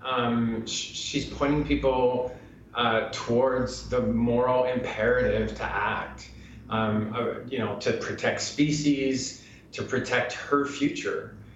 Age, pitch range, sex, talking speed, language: 30-49, 110-125 Hz, male, 115 wpm, English